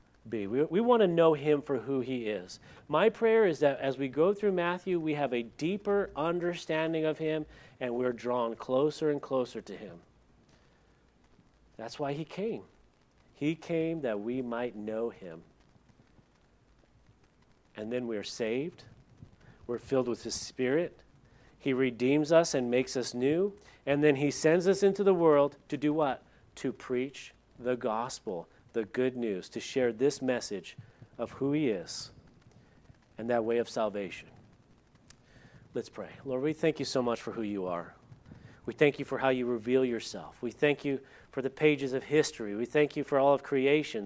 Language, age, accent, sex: English, 40-59, American, male